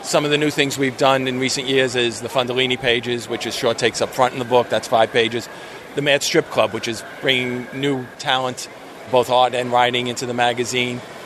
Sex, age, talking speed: male, 40-59, 225 wpm